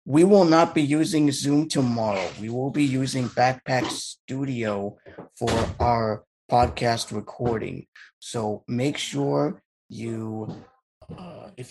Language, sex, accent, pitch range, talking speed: English, male, American, 105-125 Hz, 120 wpm